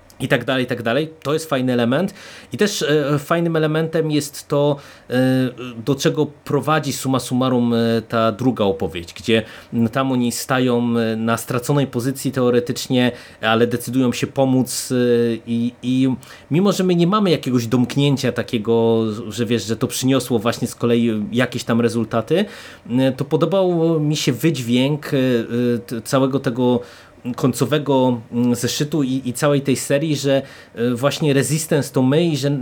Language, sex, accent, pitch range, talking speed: Polish, male, native, 120-145 Hz, 145 wpm